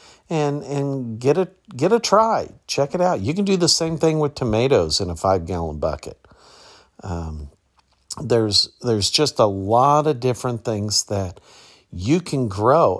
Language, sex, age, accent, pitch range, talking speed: English, male, 50-69, American, 100-135 Hz, 165 wpm